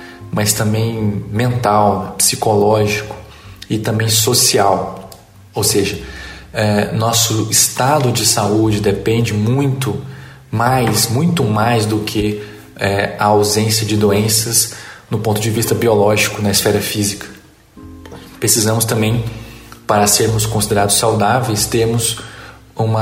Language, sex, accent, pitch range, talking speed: Portuguese, male, Brazilian, 100-120 Hz, 110 wpm